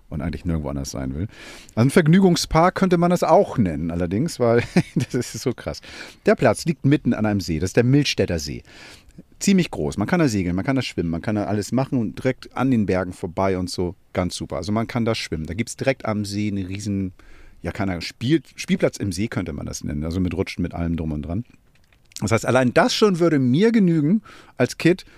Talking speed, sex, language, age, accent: 235 wpm, male, German, 50-69, German